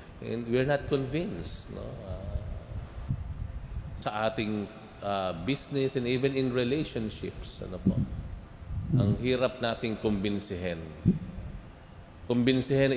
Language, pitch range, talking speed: Filipino, 100-130 Hz, 95 wpm